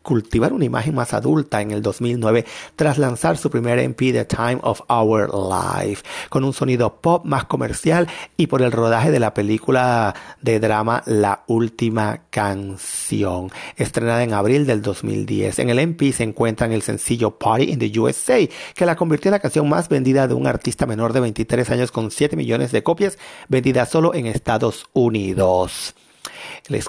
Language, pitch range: Spanish, 110-135 Hz